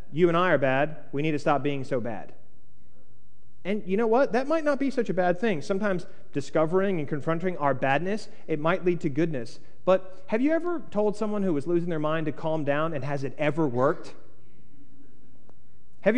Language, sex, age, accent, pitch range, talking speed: English, male, 30-49, American, 135-185 Hz, 205 wpm